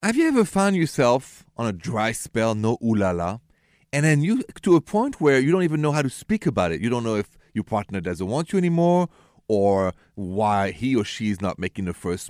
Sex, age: male, 40-59